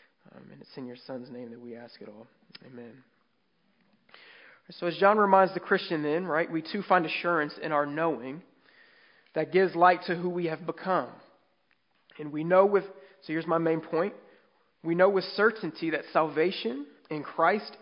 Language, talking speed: English, 180 wpm